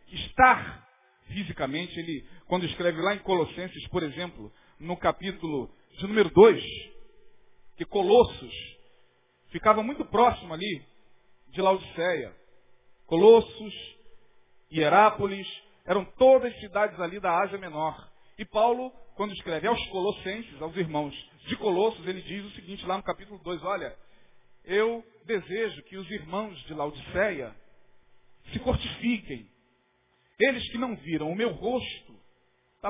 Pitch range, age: 175-235 Hz, 40-59